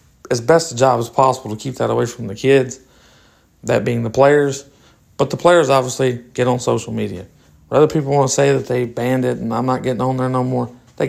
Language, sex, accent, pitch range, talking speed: English, male, American, 115-140 Hz, 235 wpm